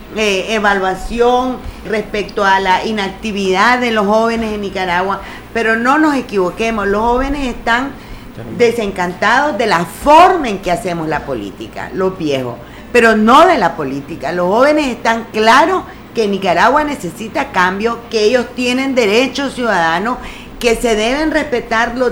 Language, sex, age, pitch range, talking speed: English, female, 40-59, 210-265 Hz, 140 wpm